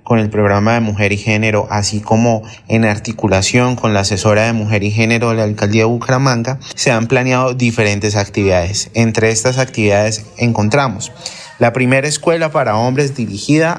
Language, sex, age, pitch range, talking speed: Spanish, male, 30-49, 110-130 Hz, 165 wpm